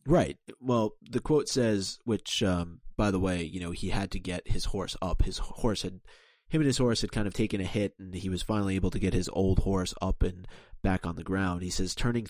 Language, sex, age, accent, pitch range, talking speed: English, male, 30-49, American, 90-105 Hz, 250 wpm